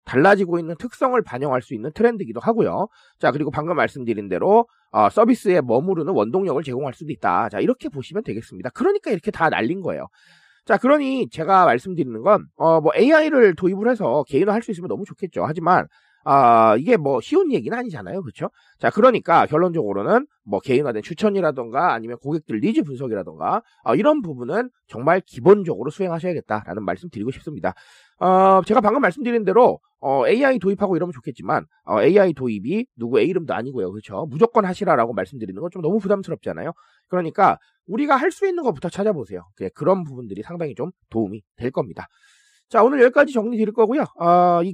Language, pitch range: Korean, 150-230 Hz